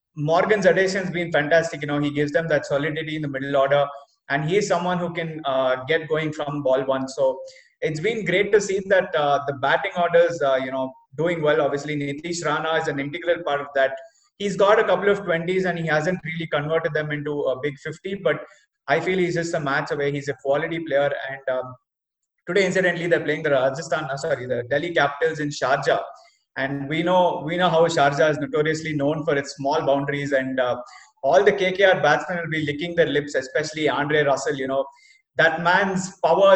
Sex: male